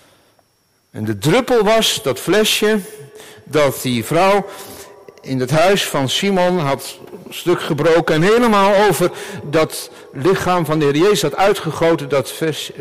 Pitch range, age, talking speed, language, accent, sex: 130-215 Hz, 60-79, 145 wpm, Dutch, Dutch, male